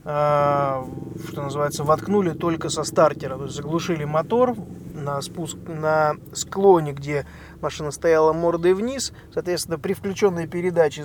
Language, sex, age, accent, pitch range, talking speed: Russian, male, 20-39, native, 145-175 Hz, 120 wpm